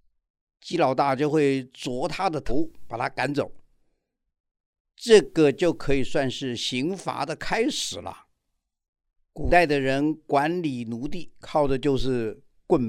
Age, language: 50-69, Chinese